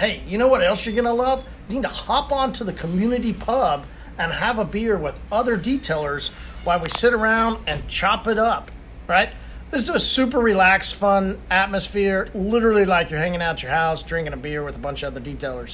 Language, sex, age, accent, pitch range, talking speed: English, male, 40-59, American, 175-230 Hz, 215 wpm